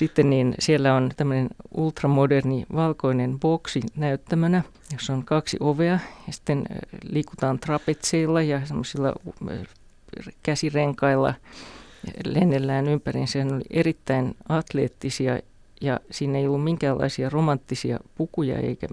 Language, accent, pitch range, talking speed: Finnish, native, 130-155 Hz, 110 wpm